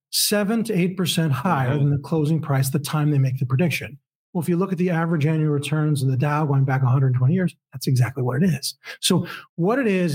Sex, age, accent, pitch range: male, 40-59, American, 145-190 Hz